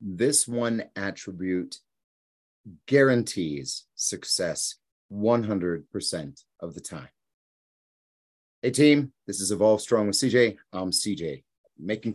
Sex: male